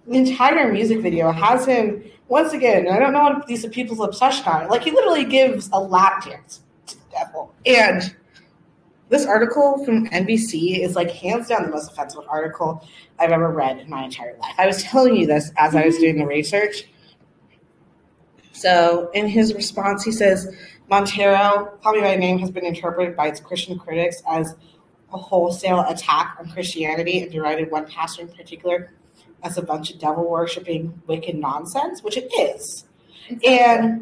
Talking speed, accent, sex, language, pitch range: 175 wpm, American, female, English, 170-215 Hz